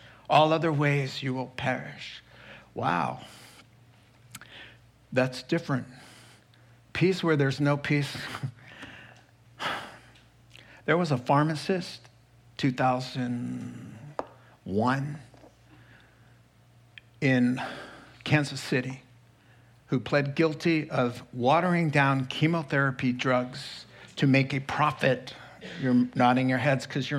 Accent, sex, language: American, male, English